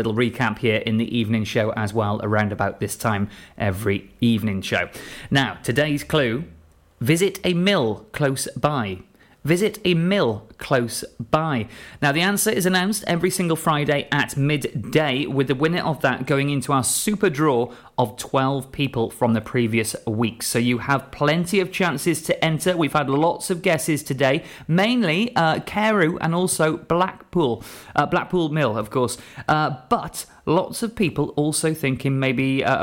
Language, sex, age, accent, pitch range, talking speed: English, male, 30-49, British, 120-170 Hz, 165 wpm